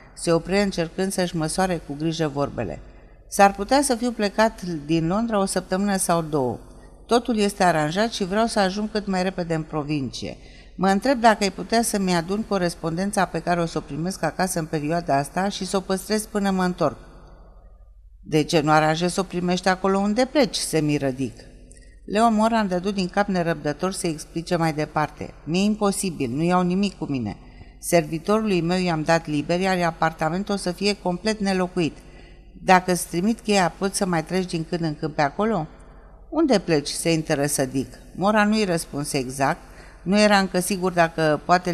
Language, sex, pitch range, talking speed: Romanian, female, 160-200 Hz, 180 wpm